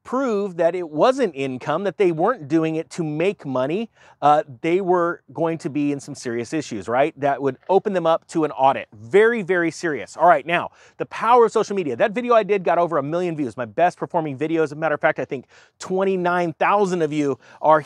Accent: American